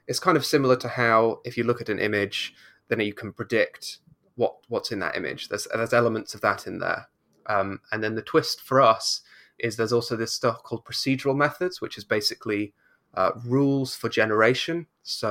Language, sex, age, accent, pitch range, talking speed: English, male, 20-39, British, 105-120 Hz, 200 wpm